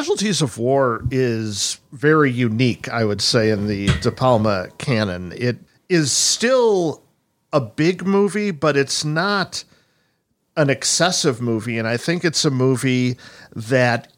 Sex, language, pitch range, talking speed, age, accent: male, English, 115-135 Hz, 140 wpm, 50-69, American